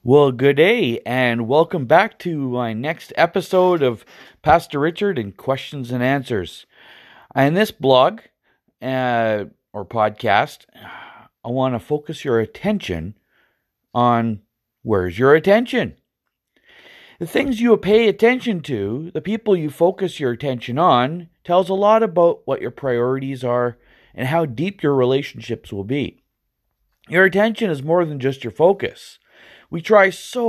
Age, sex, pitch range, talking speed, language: 40-59, male, 120-170 Hz, 140 wpm, English